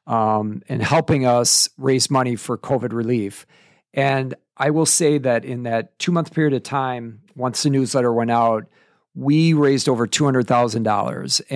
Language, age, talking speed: English, 50-69, 150 wpm